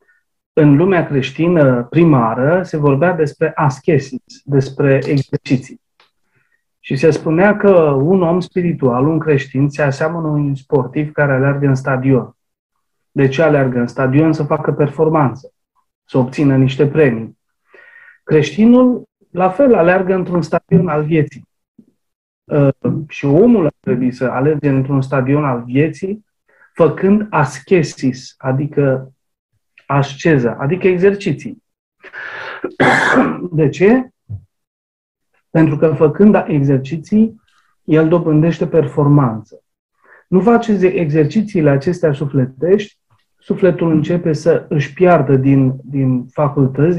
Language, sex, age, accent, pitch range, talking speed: Romanian, male, 30-49, native, 140-180 Hz, 105 wpm